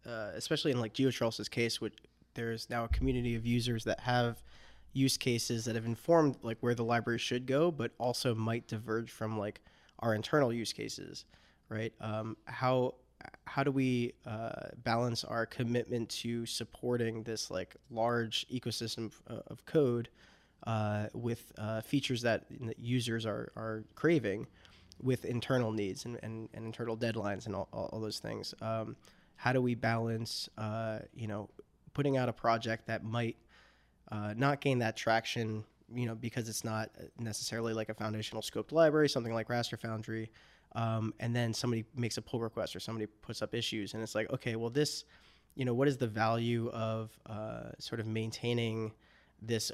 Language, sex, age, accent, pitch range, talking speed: English, male, 20-39, American, 110-120 Hz, 175 wpm